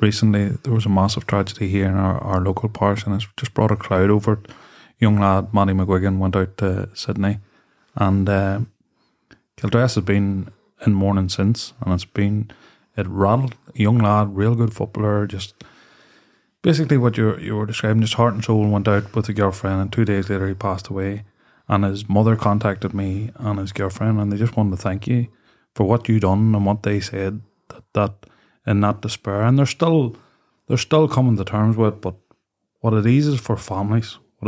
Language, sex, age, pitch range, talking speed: English, male, 20-39, 100-120 Hz, 200 wpm